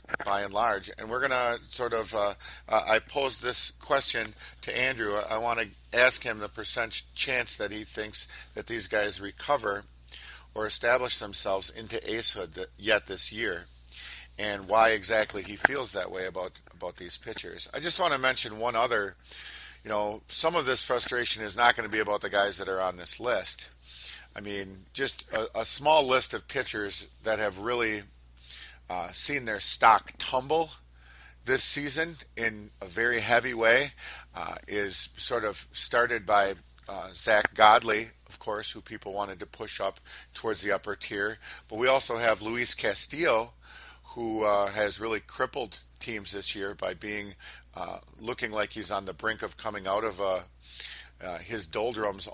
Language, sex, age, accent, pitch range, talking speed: English, male, 50-69, American, 95-115 Hz, 175 wpm